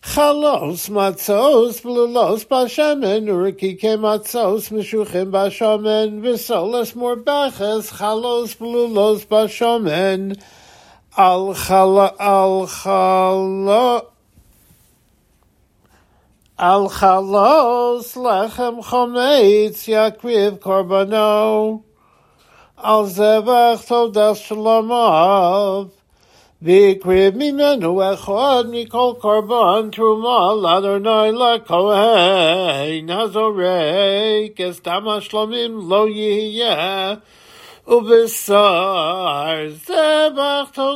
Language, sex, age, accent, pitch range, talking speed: English, male, 60-79, American, 195-235 Hz, 65 wpm